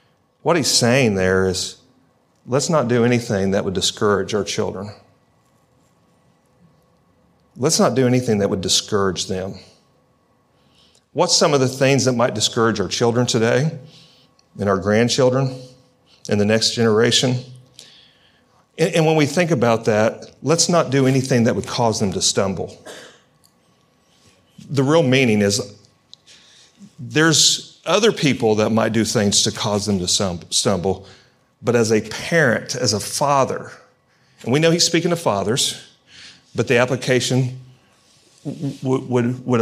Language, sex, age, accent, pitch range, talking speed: English, male, 40-59, American, 105-135 Hz, 145 wpm